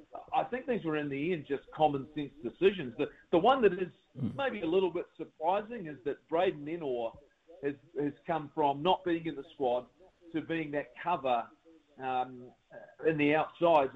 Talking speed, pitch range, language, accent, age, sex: 175 wpm, 140-170 Hz, English, Australian, 40-59, male